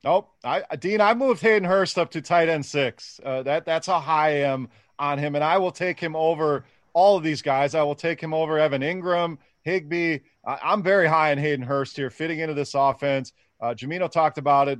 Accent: American